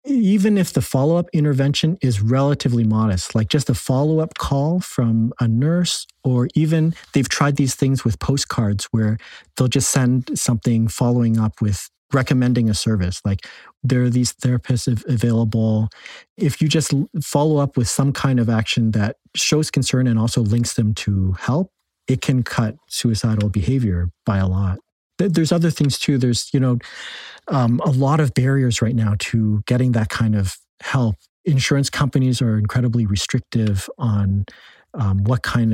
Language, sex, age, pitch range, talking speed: English, male, 40-59, 110-140 Hz, 165 wpm